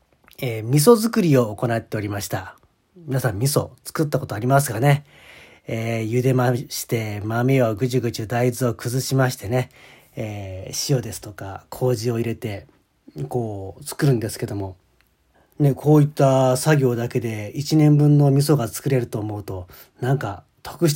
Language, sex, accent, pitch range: Japanese, male, native, 115-150 Hz